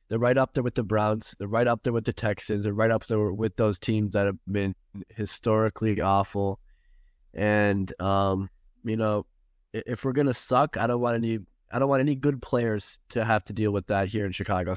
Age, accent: 20-39, American